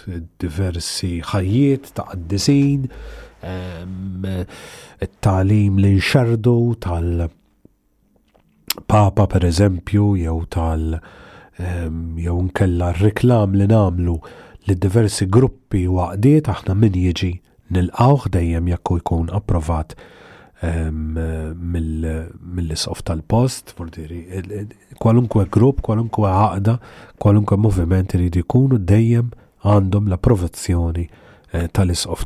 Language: English